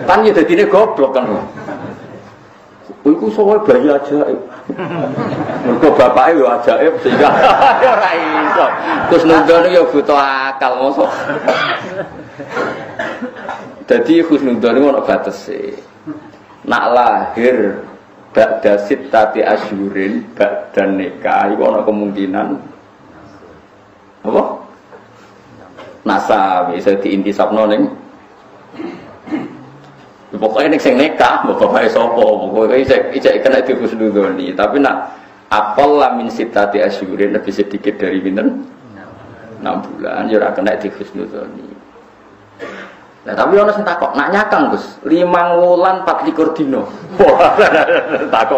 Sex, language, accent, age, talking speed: male, Indonesian, native, 50-69, 100 wpm